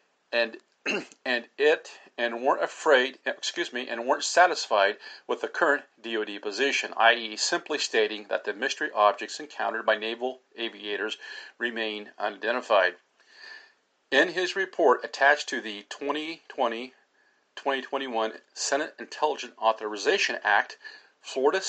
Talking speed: 115 wpm